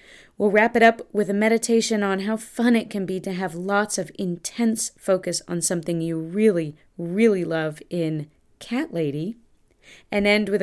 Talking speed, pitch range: 175 wpm, 175-215 Hz